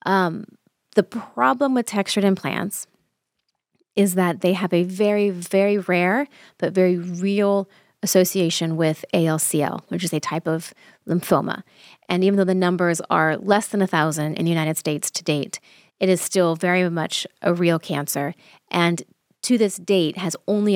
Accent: American